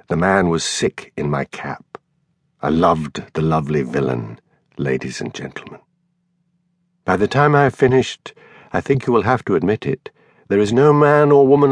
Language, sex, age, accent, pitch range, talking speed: English, male, 50-69, British, 95-145 Hz, 180 wpm